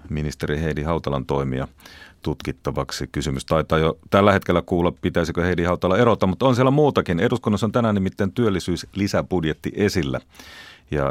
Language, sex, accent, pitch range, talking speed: Finnish, male, native, 80-105 Hz, 140 wpm